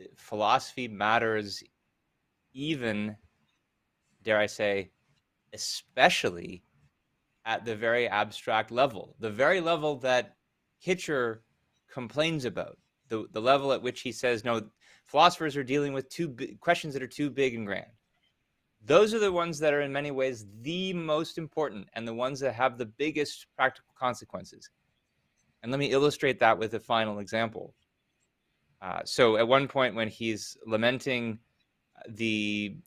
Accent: American